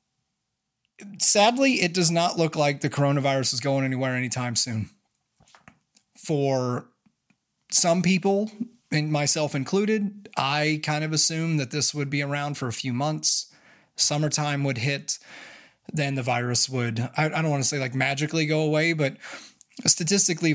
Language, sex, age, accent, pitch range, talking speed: English, male, 20-39, American, 130-165 Hz, 145 wpm